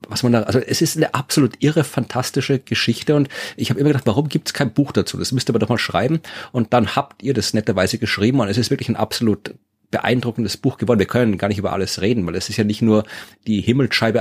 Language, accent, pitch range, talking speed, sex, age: German, German, 100-125 Hz, 255 wpm, male, 40-59